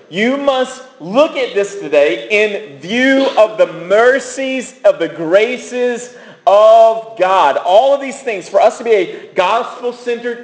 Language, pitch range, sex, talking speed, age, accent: English, 180-260 Hz, male, 150 wpm, 40-59, American